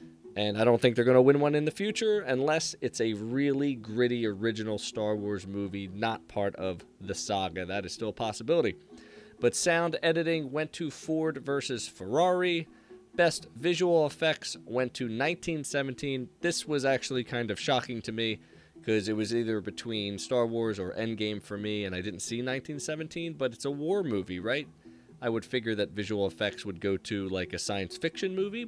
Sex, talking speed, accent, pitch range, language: male, 185 wpm, American, 105-145 Hz, English